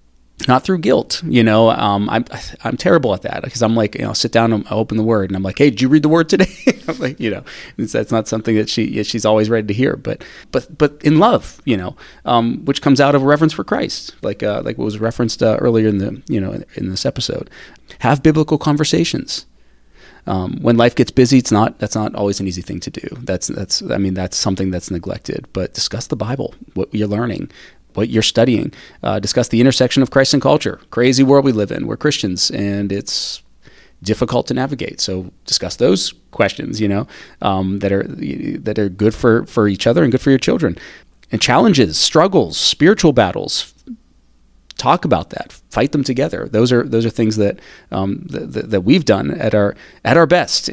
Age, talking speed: 30-49, 220 wpm